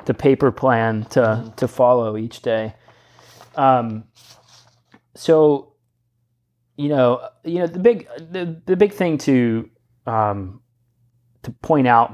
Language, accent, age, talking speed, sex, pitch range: English, American, 30-49, 125 wpm, male, 110-125 Hz